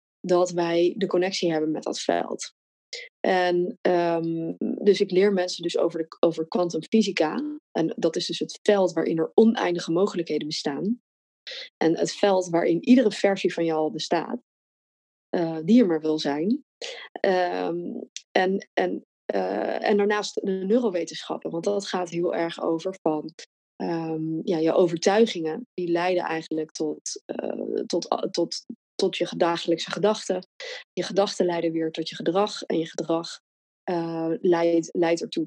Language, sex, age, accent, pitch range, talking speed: Dutch, female, 20-39, Dutch, 165-205 Hz, 145 wpm